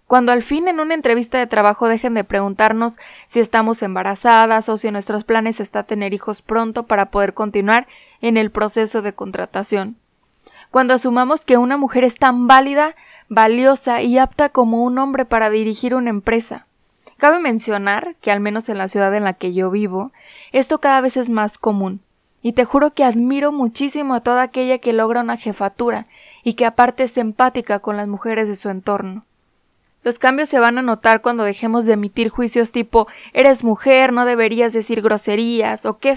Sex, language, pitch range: female, Spanish, 210-250 Hz